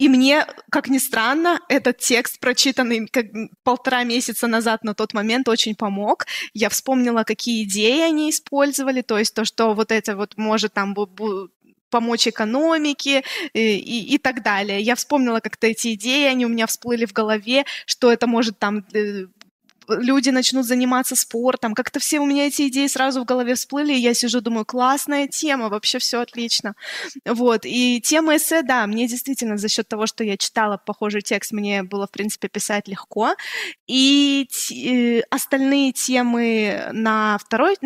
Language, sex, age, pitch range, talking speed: Russian, female, 20-39, 220-270 Hz, 160 wpm